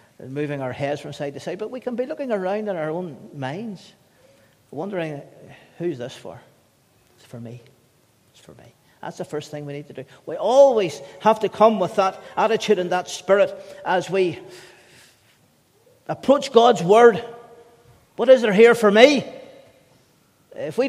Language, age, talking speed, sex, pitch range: English, 40-59, 170 wpm, male, 140-215 Hz